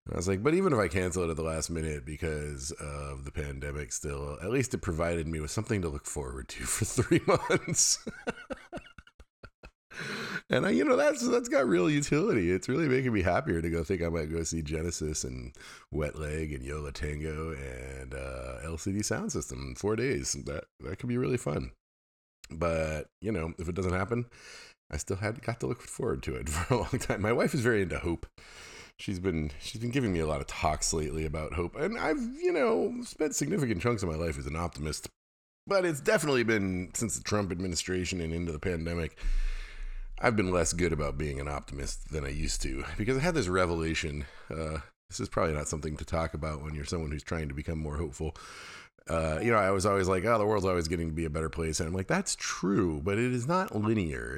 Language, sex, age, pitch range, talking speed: English, male, 30-49, 75-105 Hz, 220 wpm